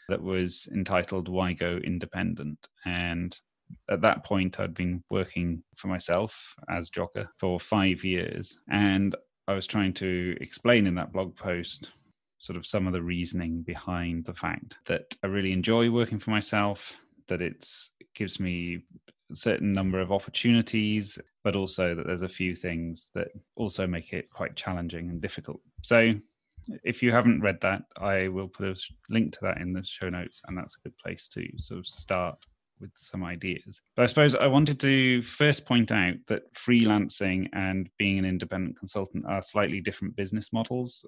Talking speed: 175 wpm